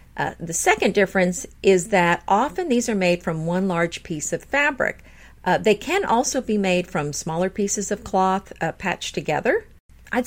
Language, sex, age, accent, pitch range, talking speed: English, female, 50-69, American, 170-215 Hz, 180 wpm